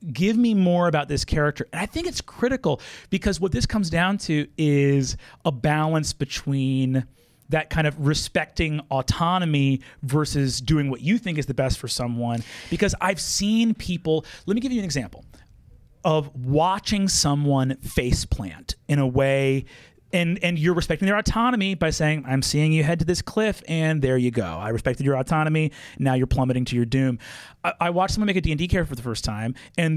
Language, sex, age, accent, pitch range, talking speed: English, male, 30-49, American, 135-190 Hz, 195 wpm